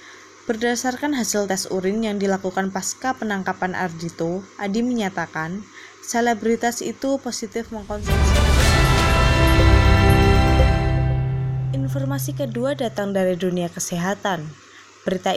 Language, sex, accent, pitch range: Indonesian, female, native, 180-230 Hz